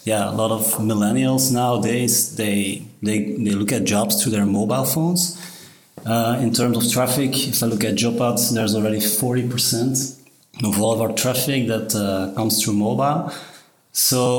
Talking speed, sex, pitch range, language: 175 wpm, male, 105-125 Hz, English